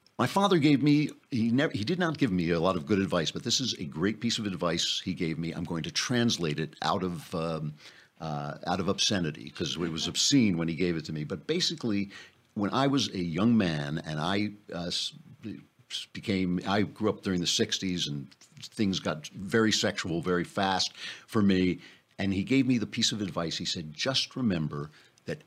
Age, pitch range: 50-69, 85-115 Hz